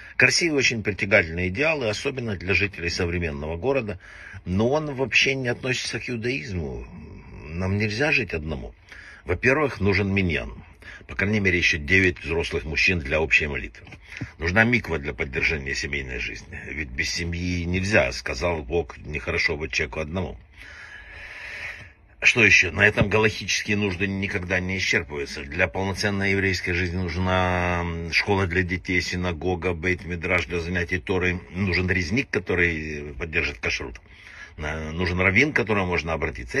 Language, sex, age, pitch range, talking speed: Russian, male, 60-79, 85-100 Hz, 140 wpm